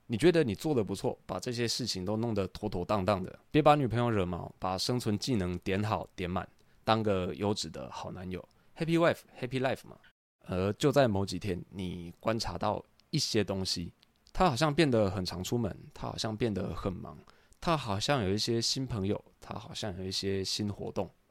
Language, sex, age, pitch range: Chinese, male, 20-39, 95-115 Hz